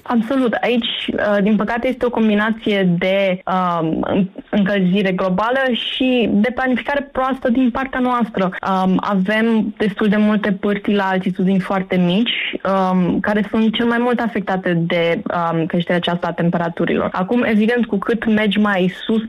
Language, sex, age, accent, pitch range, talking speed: Romanian, female, 20-39, native, 185-240 Hz, 150 wpm